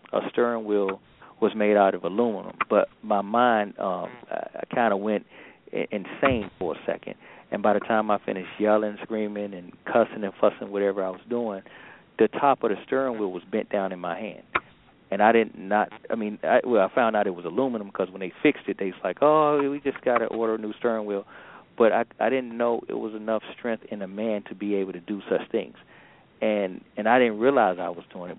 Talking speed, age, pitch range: 230 wpm, 40-59, 105-125 Hz